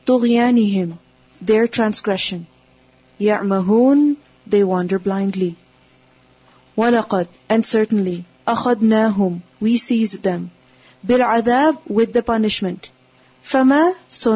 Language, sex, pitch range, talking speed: English, female, 180-235 Hz, 85 wpm